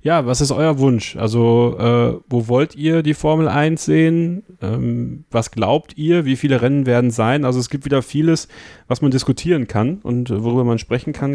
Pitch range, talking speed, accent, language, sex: 110-140 Hz, 195 wpm, German, German, male